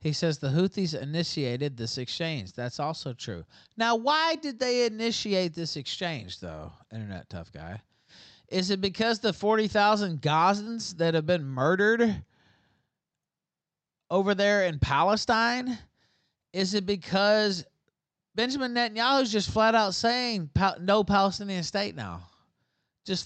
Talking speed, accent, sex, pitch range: 130 wpm, American, male, 155-205 Hz